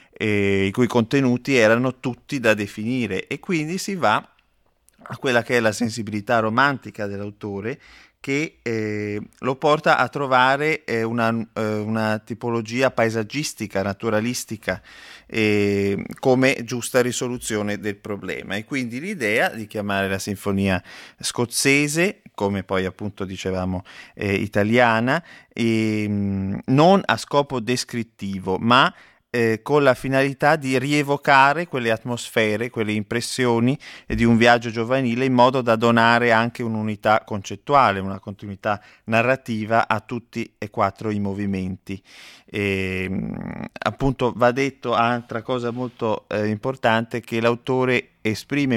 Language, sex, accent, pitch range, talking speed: Italian, male, native, 105-125 Hz, 120 wpm